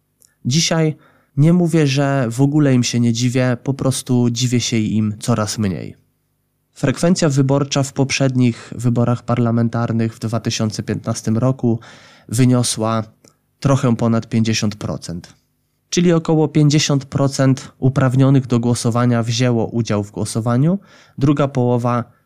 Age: 20-39